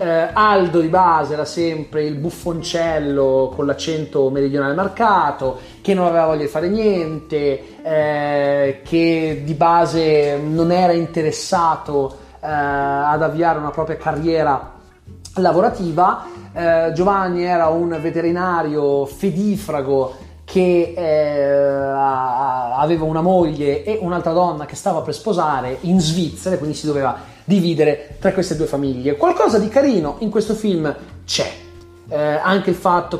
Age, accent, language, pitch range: 30-49, native, Italian, 145-175 Hz